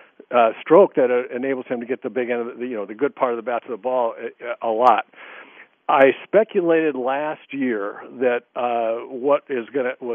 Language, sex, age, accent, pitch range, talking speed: English, male, 50-69, American, 115-135 Hz, 215 wpm